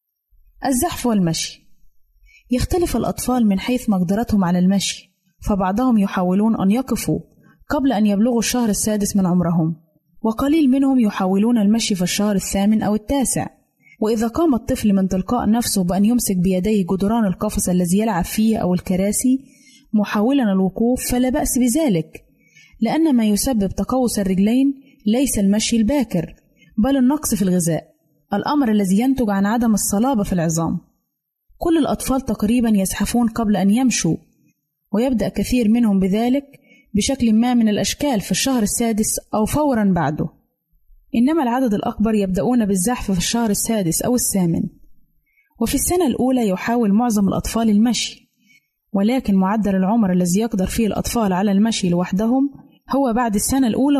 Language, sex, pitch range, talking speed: Arabic, female, 195-245 Hz, 135 wpm